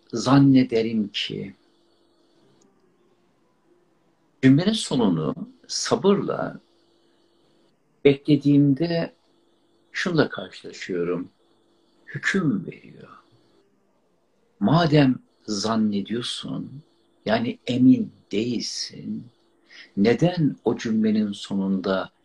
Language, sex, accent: Turkish, male, native